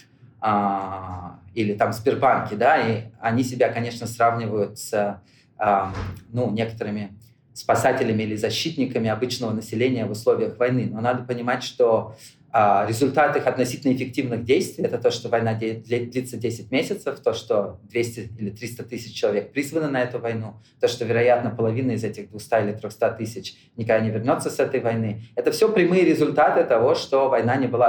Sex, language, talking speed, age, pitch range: male, Russian, 155 wpm, 30-49, 110-135 Hz